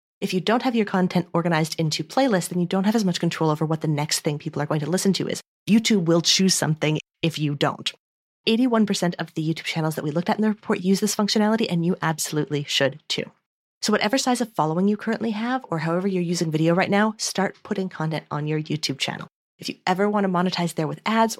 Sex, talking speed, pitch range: female, 240 wpm, 155-195 Hz